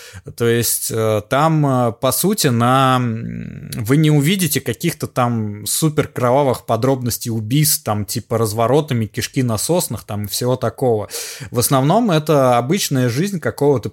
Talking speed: 125 wpm